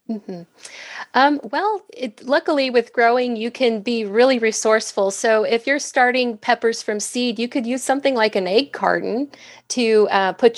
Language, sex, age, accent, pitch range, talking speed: English, female, 30-49, American, 195-230 Hz, 170 wpm